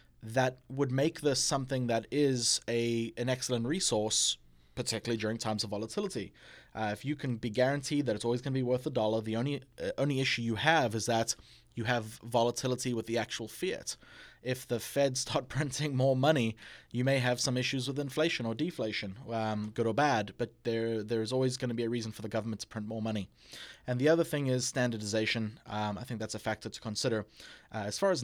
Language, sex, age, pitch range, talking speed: English, male, 20-39, 110-130 Hz, 215 wpm